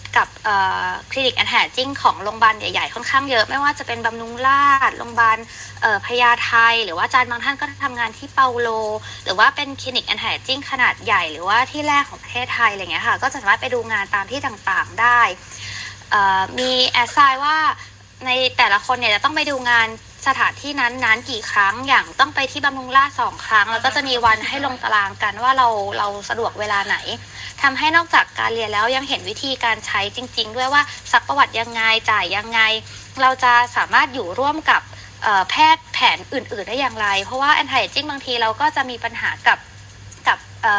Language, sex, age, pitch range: Thai, female, 20-39, 225-280 Hz